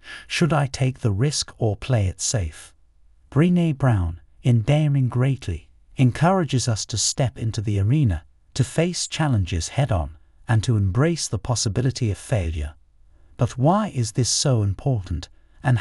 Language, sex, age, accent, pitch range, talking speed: English, male, 50-69, British, 85-135 Hz, 150 wpm